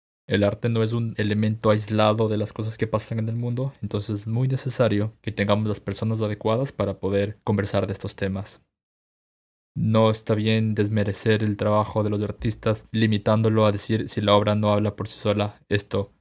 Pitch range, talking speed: 100-110 Hz, 190 wpm